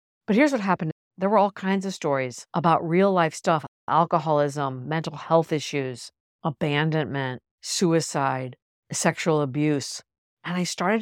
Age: 50-69